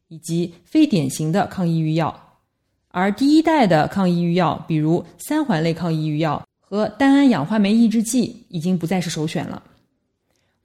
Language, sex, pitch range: Chinese, female, 170-240 Hz